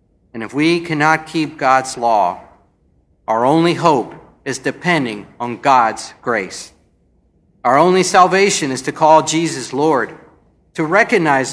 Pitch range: 130-175 Hz